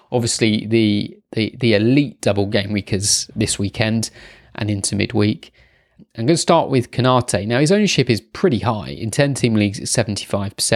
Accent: British